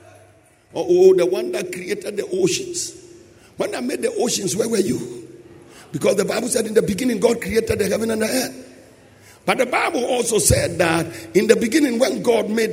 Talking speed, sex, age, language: 195 wpm, male, 50-69, English